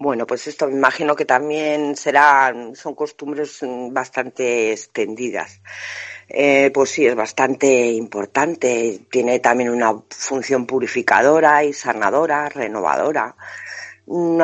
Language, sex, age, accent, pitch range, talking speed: Spanish, female, 40-59, Spanish, 120-165 Hz, 110 wpm